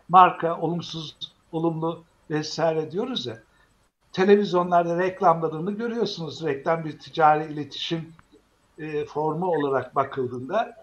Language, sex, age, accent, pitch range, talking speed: Turkish, male, 60-79, native, 165-210 Hz, 95 wpm